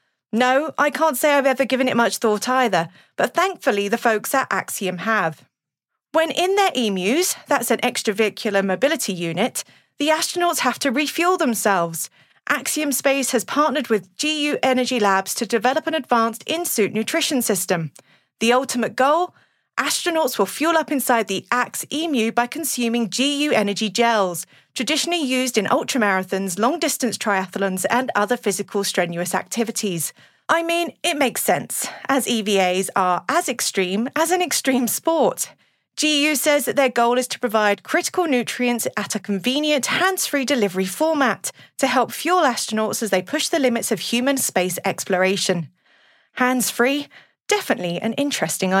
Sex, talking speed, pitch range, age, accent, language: female, 150 wpm, 205-290 Hz, 30-49, British, English